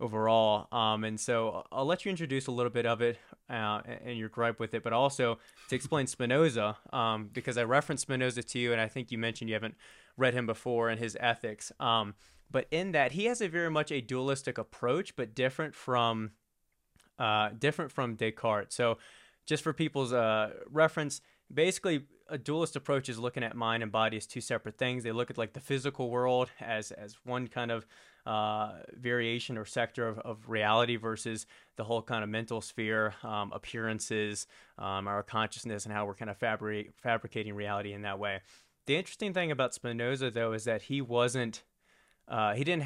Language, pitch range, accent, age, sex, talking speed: English, 110-130 Hz, American, 20-39, male, 190 wpm